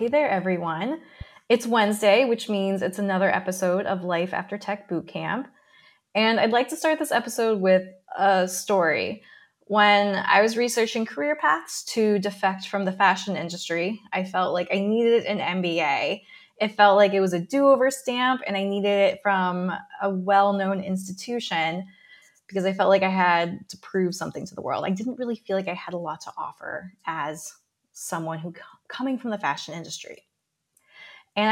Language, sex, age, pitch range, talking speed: English, female, 20-39, 185-230 Hz, 175 wpm